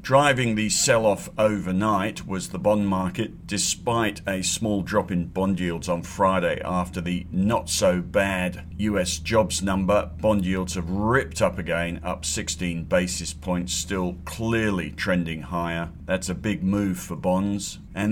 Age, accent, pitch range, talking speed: 50-69, British, 85-100 Hz, 145 wpm